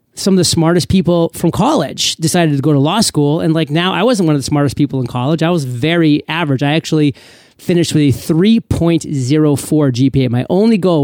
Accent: American